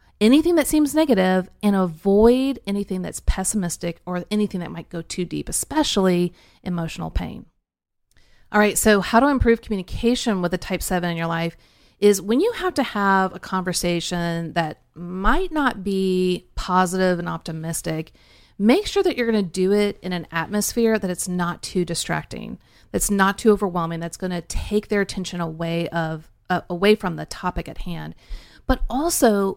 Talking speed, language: 175 wpm, English